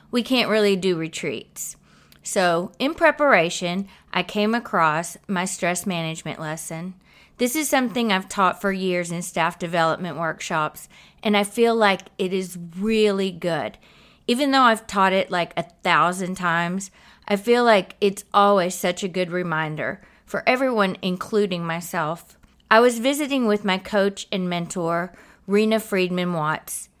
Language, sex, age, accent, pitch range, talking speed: English, female, 30-49, American, 175-215 Hz, 145 wpm